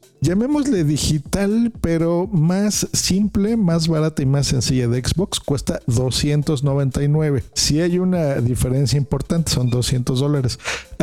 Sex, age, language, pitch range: male, 50-69, Spanish, 125-170 Hz